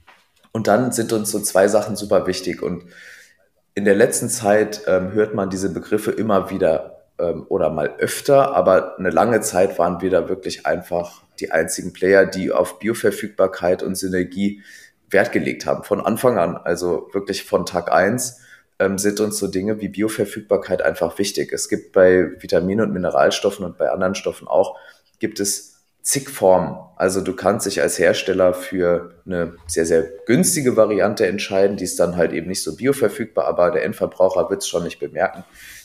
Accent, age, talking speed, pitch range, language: German, 30-49, 175 wpm, 90-105 Hz, German